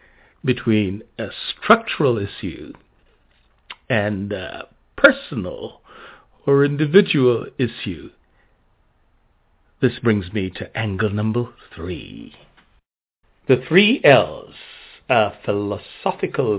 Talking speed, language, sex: 80 wpm, English, male